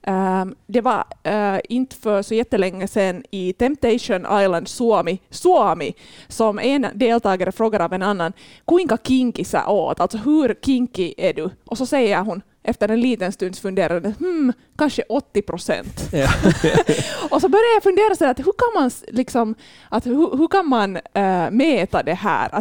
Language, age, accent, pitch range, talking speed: Swedish, 20-39, Finnish, 200-265 Hz, 160 wpm